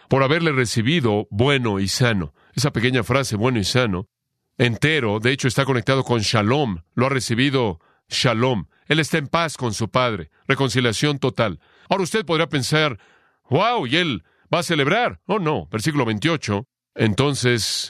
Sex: male